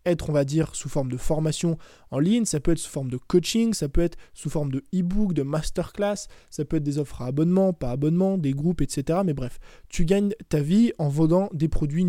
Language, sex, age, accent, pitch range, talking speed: French, male, 20-39, French, 150-185 Hz, 240 wpm